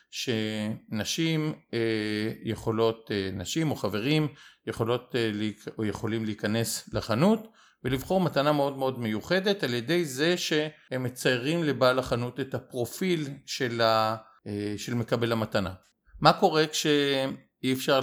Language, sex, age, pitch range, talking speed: Hebrew, male, 50-69, 115-160 Hz, 105 wpm